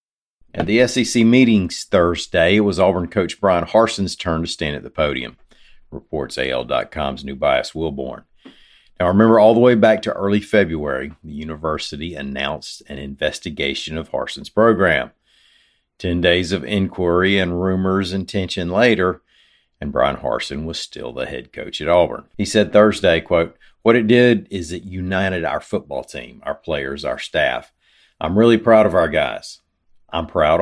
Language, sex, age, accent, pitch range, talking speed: English, male, 50-69, American, 85-105 Hz, 165 wpm